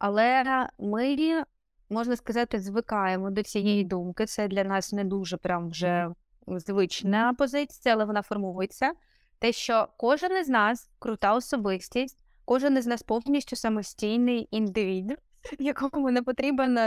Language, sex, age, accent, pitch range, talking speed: Ukrainian, female, 20-39, native, 190-235 Hz, 125 wpm